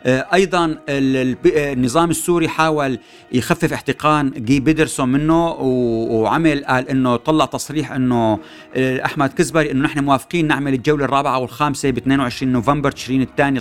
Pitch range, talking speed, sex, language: 125-155 Hz, 125 wpm, male, Arabic